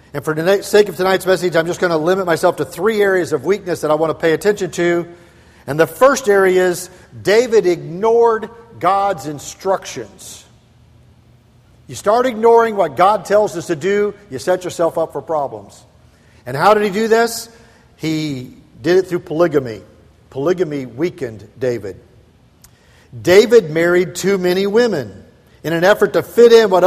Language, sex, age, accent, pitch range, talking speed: English, male, 50-69, American, 160-215 Hz, 165 wpm